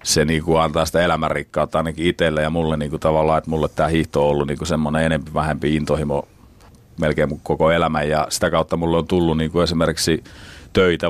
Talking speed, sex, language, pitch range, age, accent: 200 wpm, male, Finnish, 75-80 Hz, 40-59, native